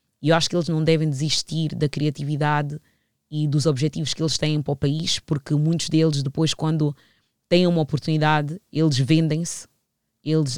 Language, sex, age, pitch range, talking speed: English, female, 20-39, 145-170 Hz, 170 wpm